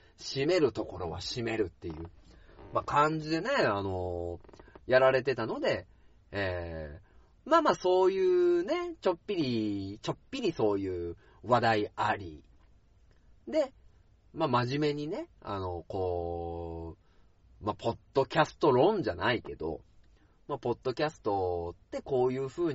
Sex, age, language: male, 40-59, Japanese